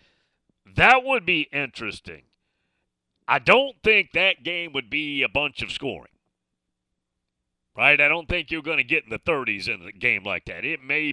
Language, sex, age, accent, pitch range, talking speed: English, male, 40-59, American, 100-150 Hz, 180 wpm